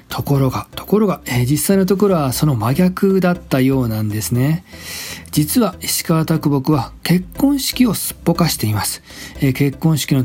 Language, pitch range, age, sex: Japanese, 125-180 Hz, 40-59, male